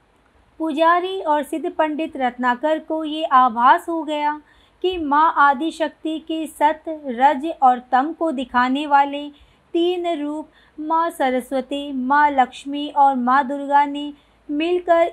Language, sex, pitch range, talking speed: Hindi, female, 280-330 Hz, 125 wpm